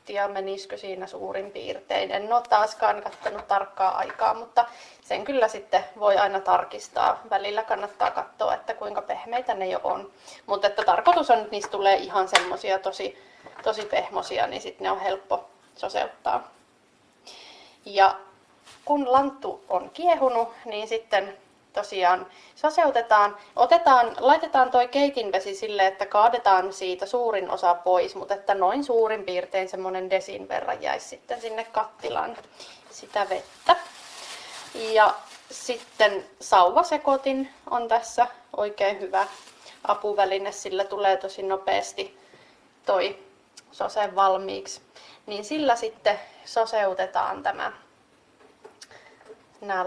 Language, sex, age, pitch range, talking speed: Finnish, female, 30-49, 195-240 Hz, 120 wpm